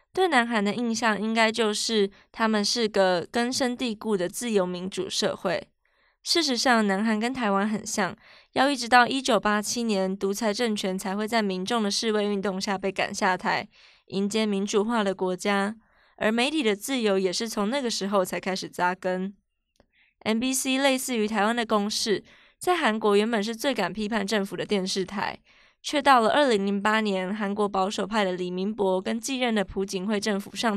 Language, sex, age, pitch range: Chinese, female, 20-39, 195-235 Hz